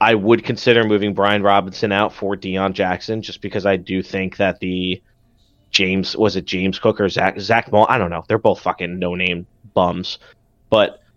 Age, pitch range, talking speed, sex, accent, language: 30-49, 95-115 Hz, 195 wpm, male, American, English